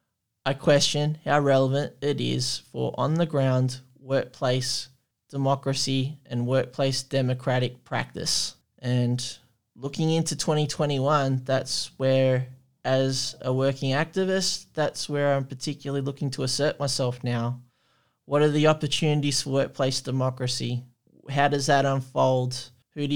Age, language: 20-39, English